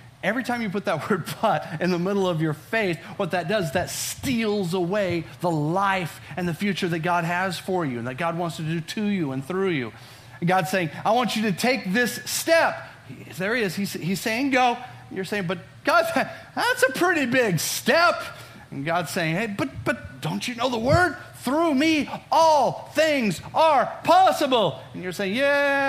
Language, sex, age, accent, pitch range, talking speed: English, male, 40-59, American, 155-225 Hz, 195 wpm